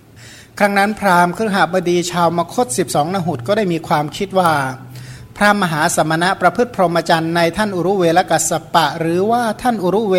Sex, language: male, Thai